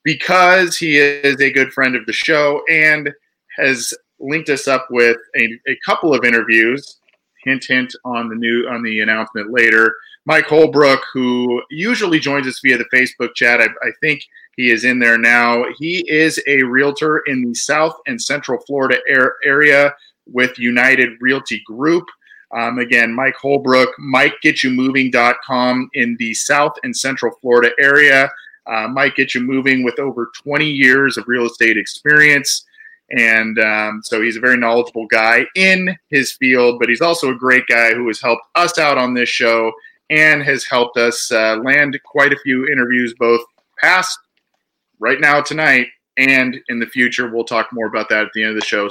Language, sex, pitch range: English, male, 120-145 Hz